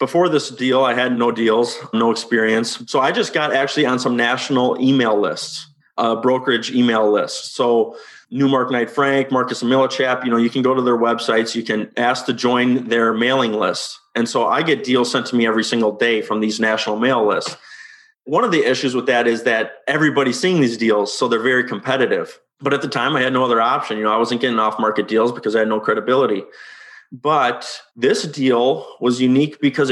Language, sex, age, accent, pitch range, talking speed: English, male, 30-49, American, 115-145 Hz, 215 wpm